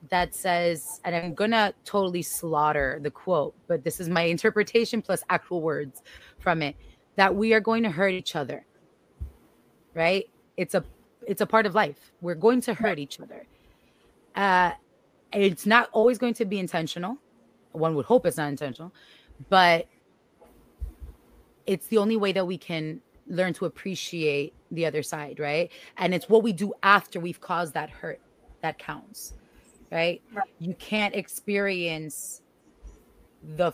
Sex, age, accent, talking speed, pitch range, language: female, 20-39, American, 155 wpm, 160-200 Hz, English